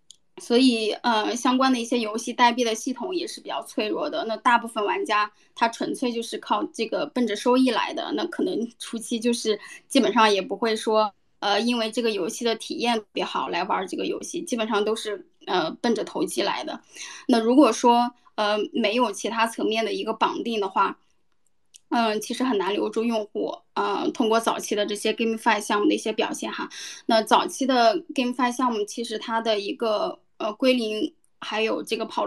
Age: 10-29